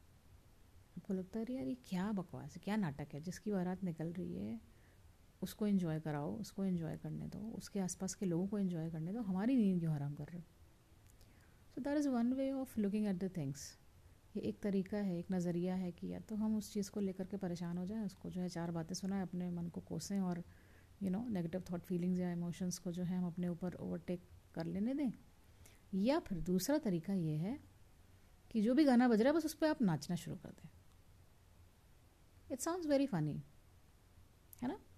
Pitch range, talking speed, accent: 140-210 Hz, 105 wpm, Indian